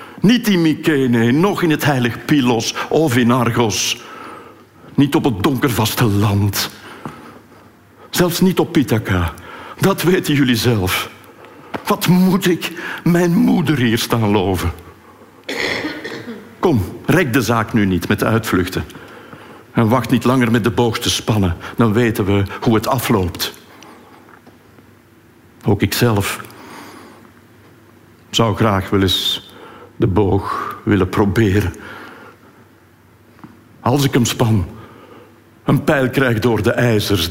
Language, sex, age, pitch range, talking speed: Dutch, male, 60-79, 105-130 Hz, 120 wpm